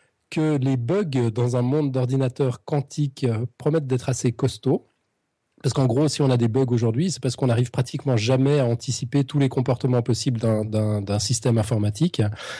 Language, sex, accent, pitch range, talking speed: French, male, French, 120-145 Hz, 180 wpm